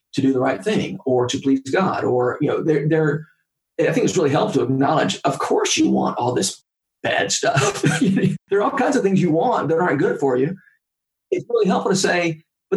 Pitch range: 135-180 Hz